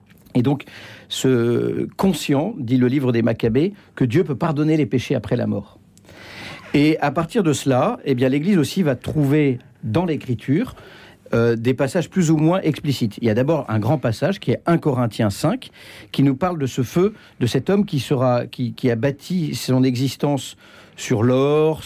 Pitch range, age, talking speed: 120-150 Hz, 50-69, 190 wpm